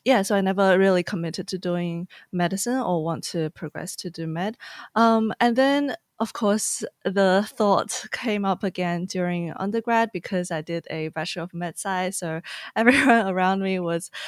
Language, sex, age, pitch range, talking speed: English, female, 20-39, 180-230 Hz, 170 wpm